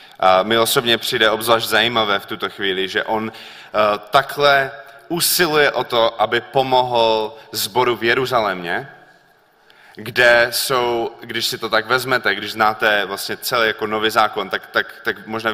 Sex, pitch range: male, 110-140 Hz